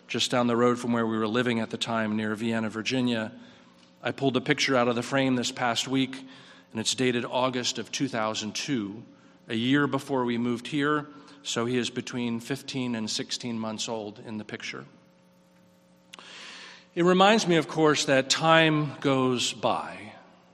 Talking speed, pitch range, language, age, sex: 170 wpm, 110-145 Hz, English, 40-59, male